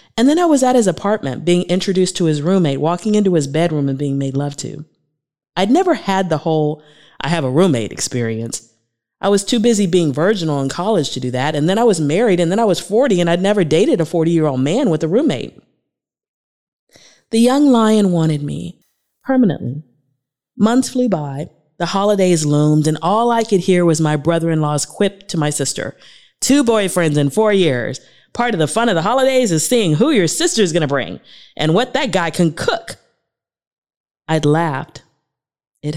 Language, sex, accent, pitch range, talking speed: English, female, American, 145-200 Hz, 195 wpm